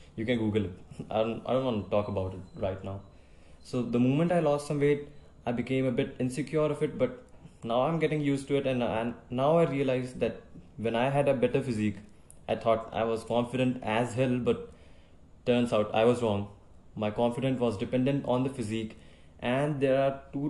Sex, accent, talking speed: male, Indian, 210 wpm